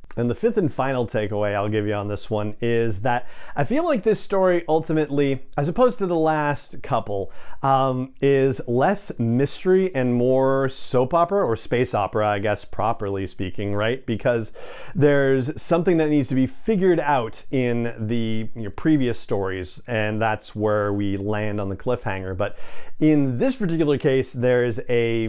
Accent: American